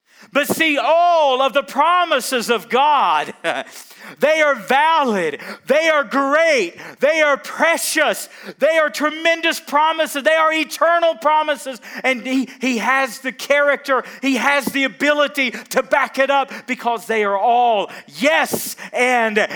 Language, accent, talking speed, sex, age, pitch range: English, American, 140 wpm, male, 40-59, 205-285 Hz